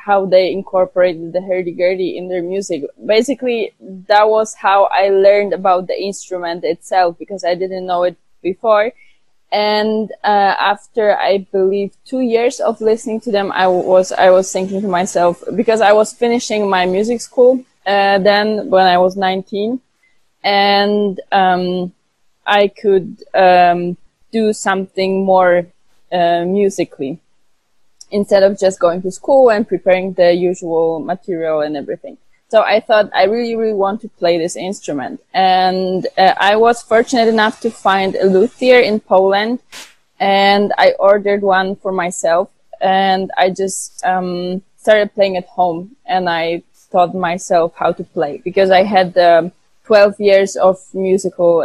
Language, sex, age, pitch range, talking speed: English, female, 20-39, 180-205 Hz, 150 wpm